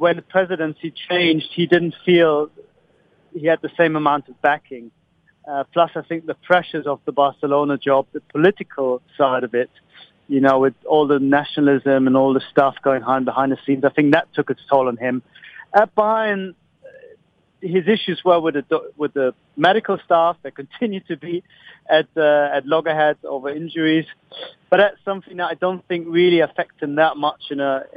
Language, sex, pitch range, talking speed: English, male, 140-175 Hz, 185 wpm